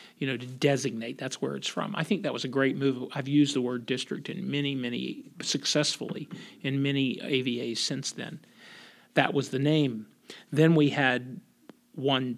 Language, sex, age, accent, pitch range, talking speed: English, male, 50-69, American, 130-165 Hz, 180 wpm